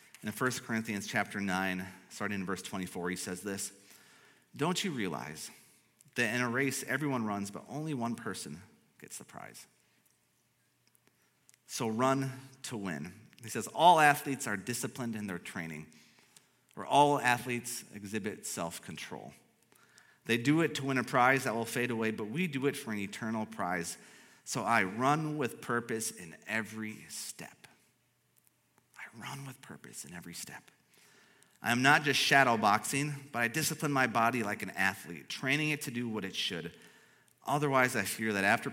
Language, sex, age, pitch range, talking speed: English, male, 30-49, 105-145 Hz, 165 wpm